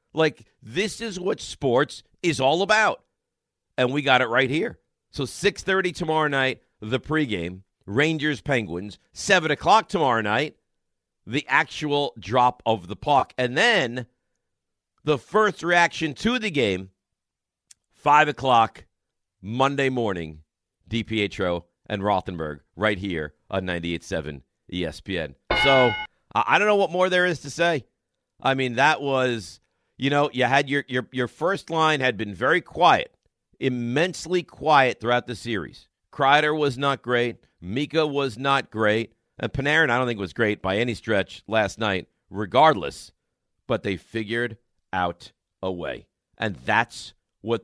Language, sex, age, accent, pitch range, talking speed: English, male, 50-69, American, 105-140 Hz, 140 wpm